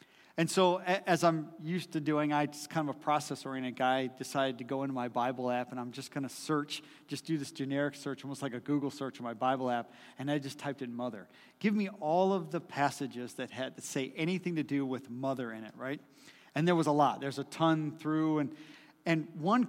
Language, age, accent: English, 40-59, American